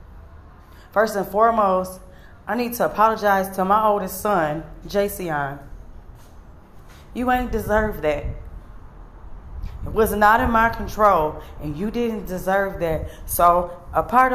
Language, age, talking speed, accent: English, 20-39, 125 wpm, American